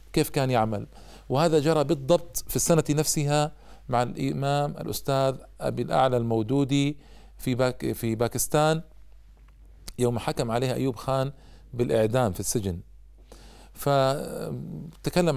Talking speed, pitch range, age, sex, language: 110 wpm, 120-150 Hz, 40-59, male, Arabic